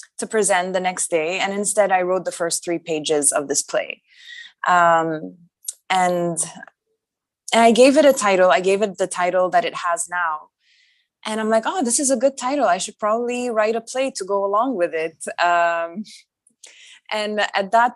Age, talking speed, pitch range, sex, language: 20-39, 190 wpm, 175-225 Hz, female, English